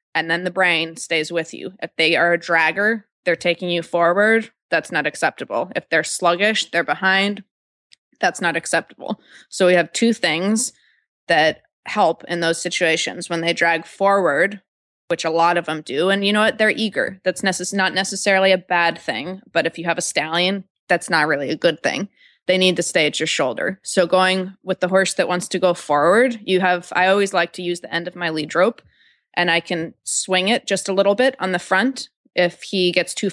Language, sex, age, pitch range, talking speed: English, female, 20-39, 170-195 Hz, 210 wpm